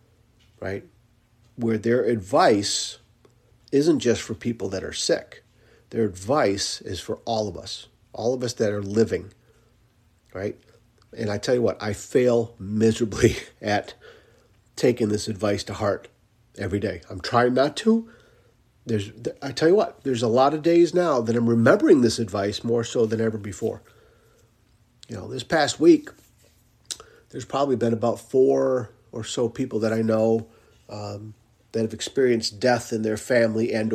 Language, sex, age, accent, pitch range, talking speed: English, male, 40-59, American, 105-120 Hz, 160 wpm